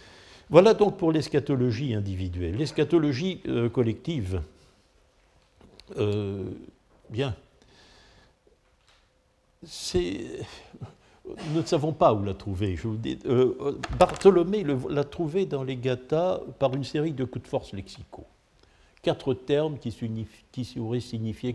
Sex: male